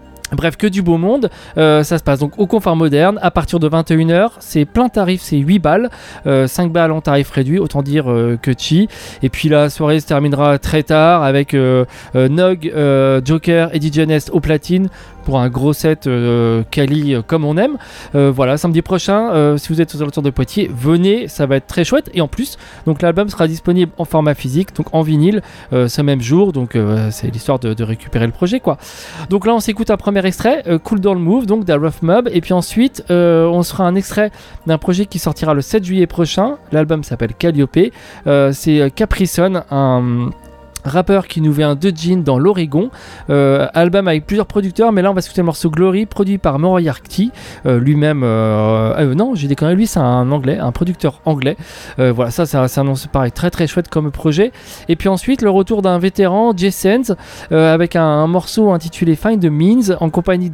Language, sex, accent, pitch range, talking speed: French, male, French, 145-185 Hz, 215 wpm